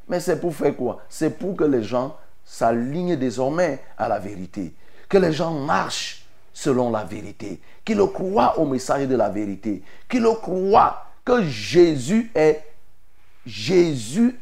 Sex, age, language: male, 50-69, French